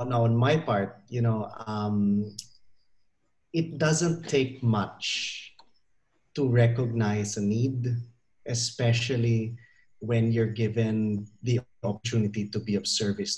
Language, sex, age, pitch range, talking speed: English, male, 30-49, 110-135 Hz, 110 wpm